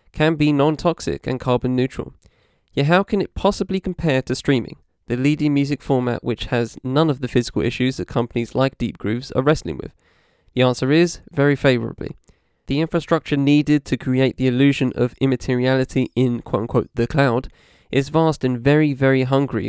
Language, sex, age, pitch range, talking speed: English, male, 20-39, 125-140 Hz, 175 wpm